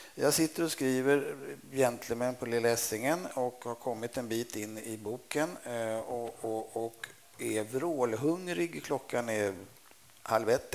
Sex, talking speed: male, 135 wpm